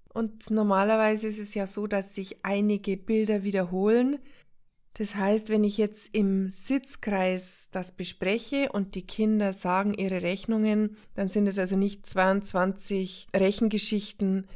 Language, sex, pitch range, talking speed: German, female, 185-225 Hz, 135 wpm